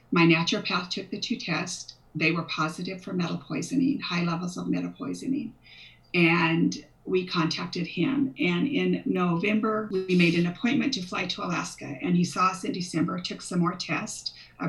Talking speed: 175 wpm